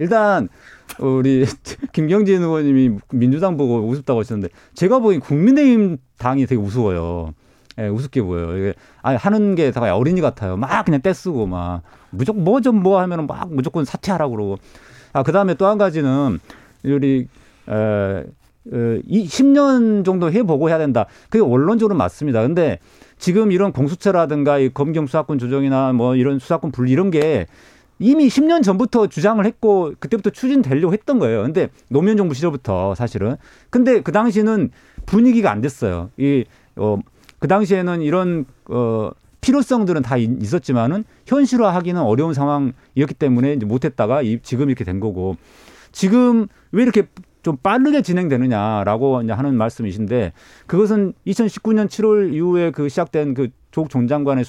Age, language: 40-59, Korean